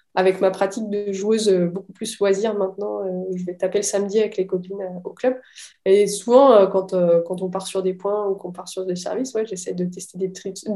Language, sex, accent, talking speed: French, female, French, 225 wpm